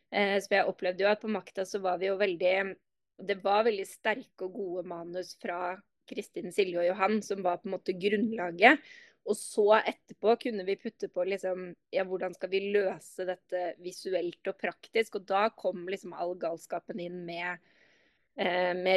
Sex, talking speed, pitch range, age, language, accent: female, 175 wpm, 180-205 Hz, 20-39, English, Swedish